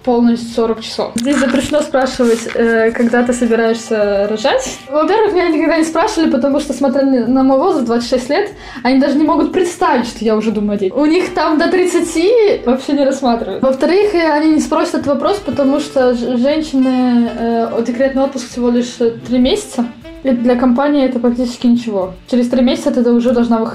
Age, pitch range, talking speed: 20-39, 235-290 Hz, 170 wpm